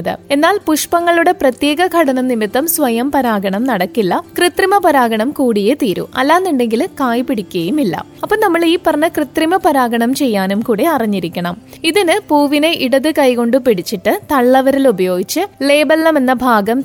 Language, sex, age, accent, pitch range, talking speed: Malayalam, female, 20-39, native, 225-310 Hz, 120 wpm